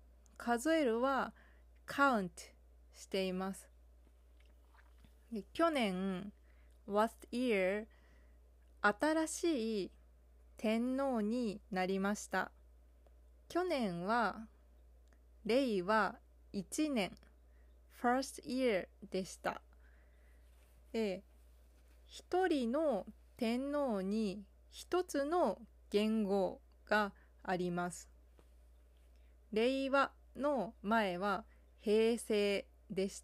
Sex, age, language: female, 20-39, Japanese